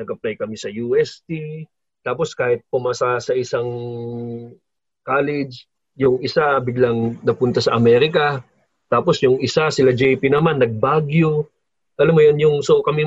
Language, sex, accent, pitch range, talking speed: Filipino, male, native, 135-195 Hz, 135 wpm